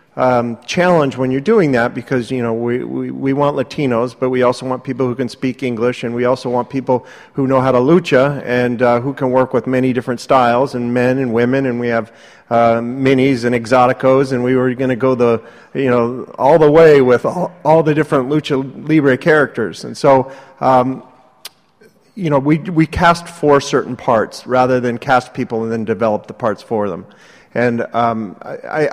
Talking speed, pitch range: 200 wpm, 120-135 Hz